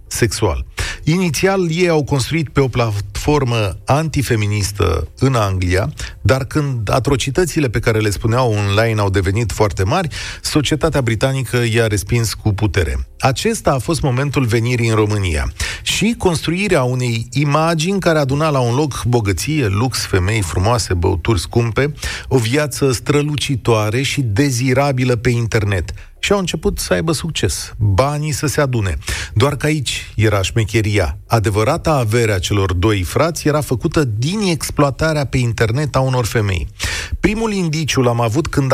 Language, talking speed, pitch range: Romanian, 140 wpm, 105-145 Hz